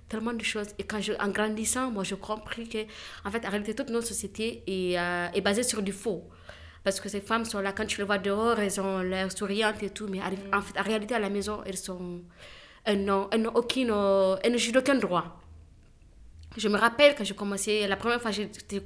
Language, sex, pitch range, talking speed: French, female, 195-230 Hz, 230 wpm